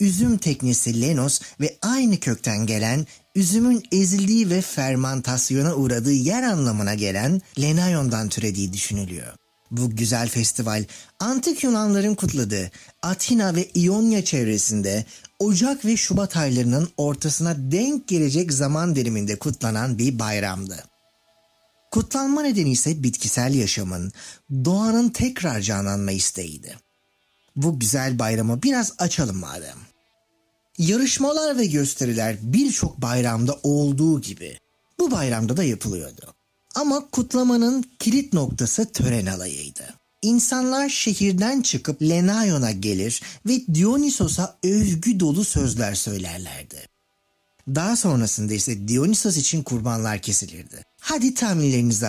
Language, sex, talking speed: Turkish, male, 105 wpm